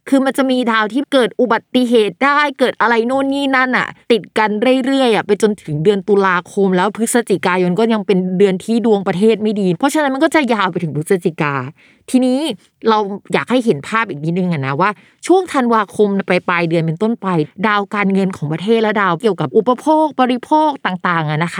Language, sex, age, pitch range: Thai, female, 20-39, 190-250 Hz